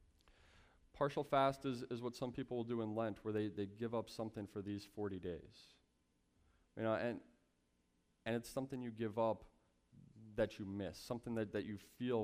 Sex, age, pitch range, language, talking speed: male, 20-39, 100-135 Hz, English, 185 wpm